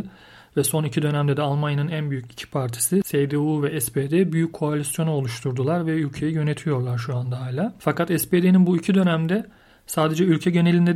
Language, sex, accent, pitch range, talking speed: Turkish, male, native, 140-160 Hz, 165 wpm